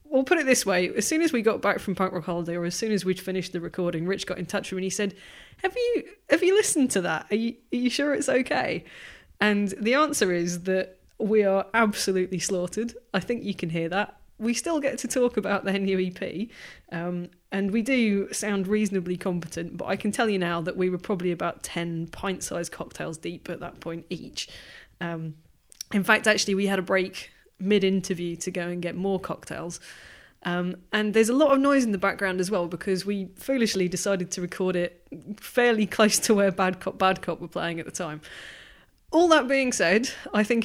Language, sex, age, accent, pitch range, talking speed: English, female, 20-39, British, 180-245 Hz, 220 wpm